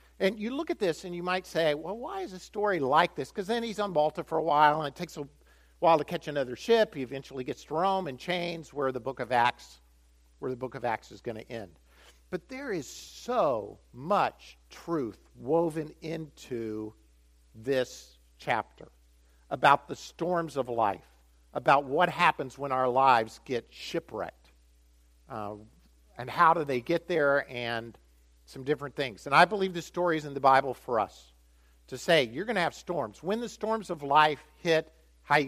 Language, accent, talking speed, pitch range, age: English, American, 195 wpm, 110-175 Hz, 50-69